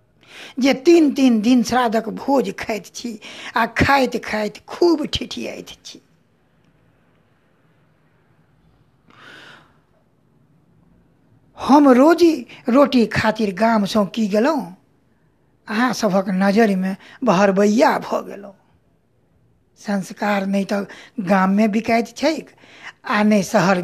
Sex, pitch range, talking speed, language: female, 205-270 Hz, 75 wpm, Hindi